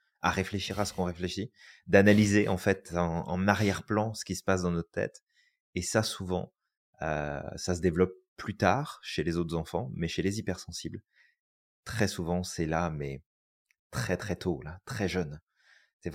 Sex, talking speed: male, 180 wpm